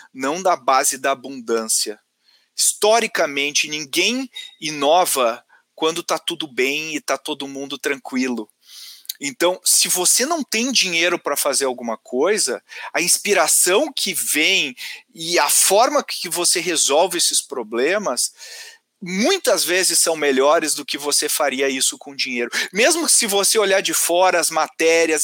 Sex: male